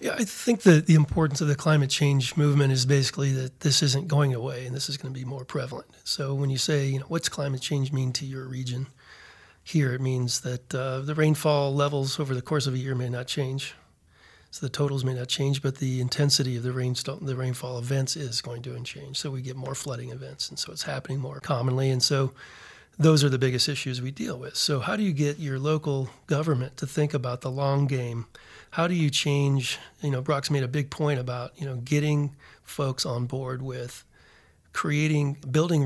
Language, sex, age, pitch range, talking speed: English, male, 40-59, 130-145 Hz, 220 wpm